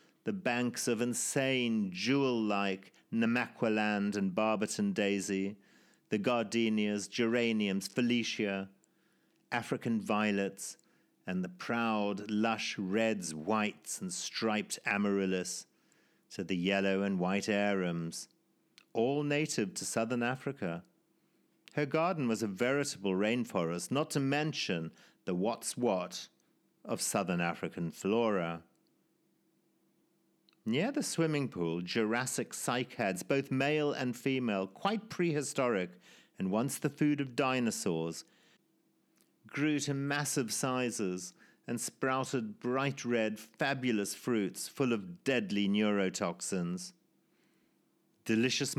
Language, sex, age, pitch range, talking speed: English, male, 50-69, 100-135 Hz, 105 wpm